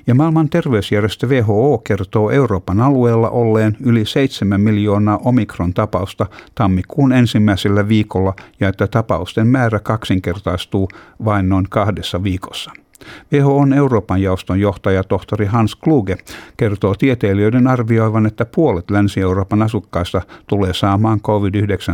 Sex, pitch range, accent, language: male, 100-145 Hz, native, Finnish